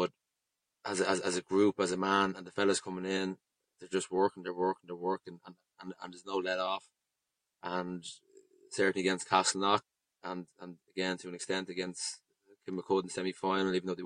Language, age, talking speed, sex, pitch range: English, 20-39, 190 wpm, male, 90-95 Hz